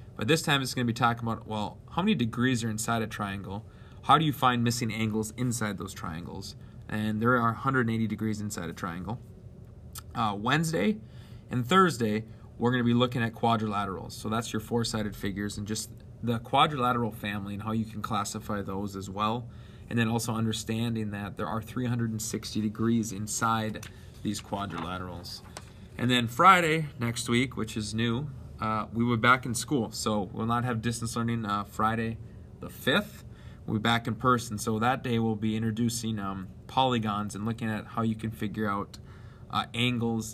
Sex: male